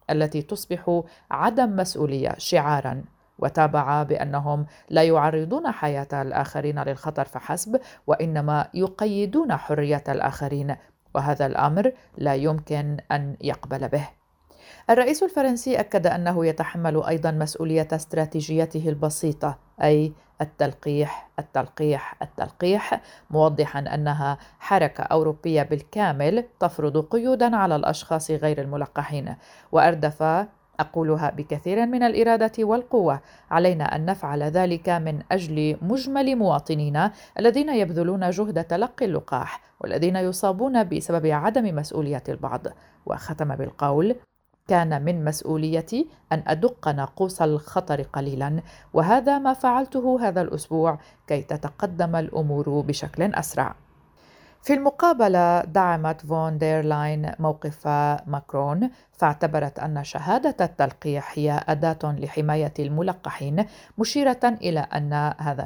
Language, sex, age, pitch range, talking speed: Arabic, female, 40-59, 150-185 Hz, 100 wpm